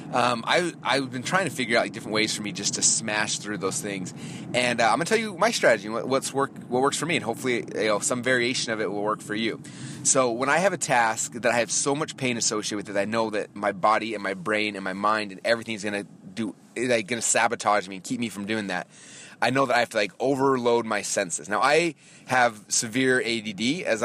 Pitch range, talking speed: 110-155 Hz, 255 wpm